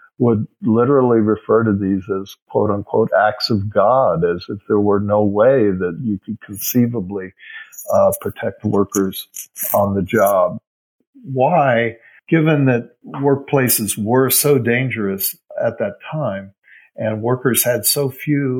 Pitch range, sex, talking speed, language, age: 105-130 Hz, male, 135 wpm, English, 50-69